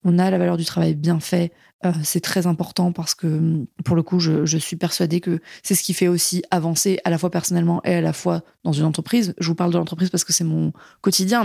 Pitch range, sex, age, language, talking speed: 180-220 Hz, female, 20-39, French, 250 wpm